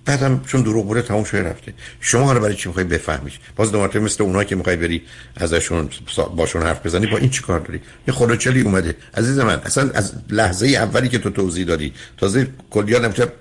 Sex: male